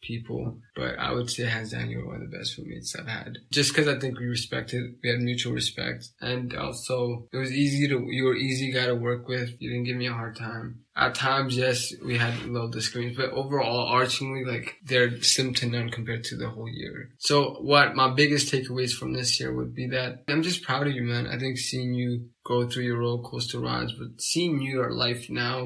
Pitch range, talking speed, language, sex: 120-135 Hz, 230 wpm, English, male